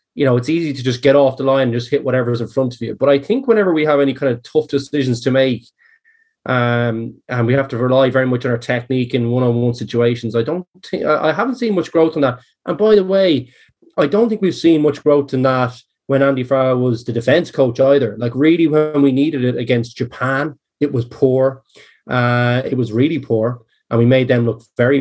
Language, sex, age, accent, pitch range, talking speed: English, male, 20-39, Irish, 125-155 Hz, 235 wpm